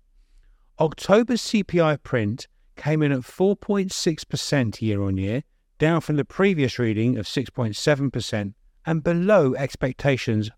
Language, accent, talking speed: English, British, 100 wpm